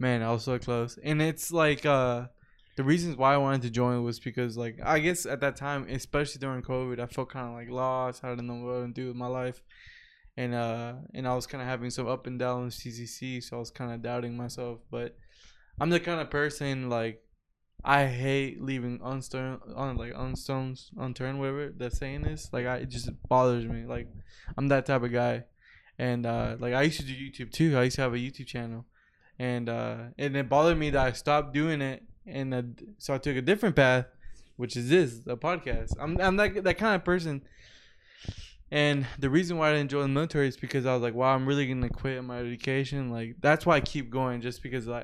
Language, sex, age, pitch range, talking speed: English, male, 20-39, 120-145 Hz, 230 wpm